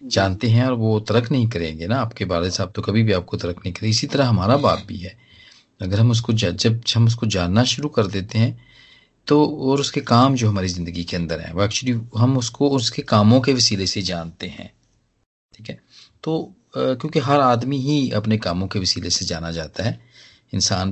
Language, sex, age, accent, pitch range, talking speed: Hindi, male, 40-59, native, 95-125 Hz, 210 wpm